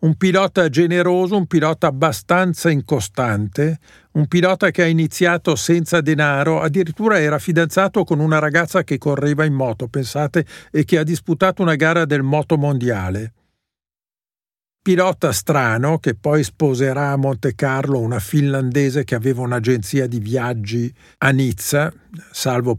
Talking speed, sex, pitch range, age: 135 wpm, male, 135-180 Hz, 50-69